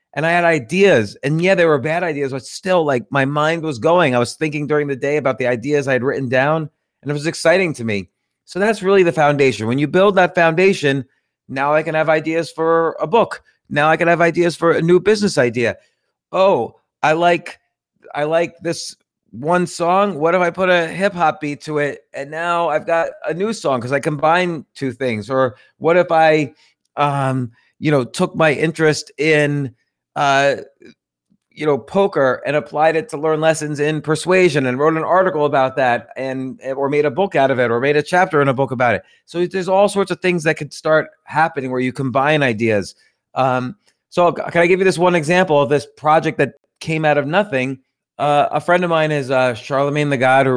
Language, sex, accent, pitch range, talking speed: English, male, American, 135-170 Hz, 215 wpm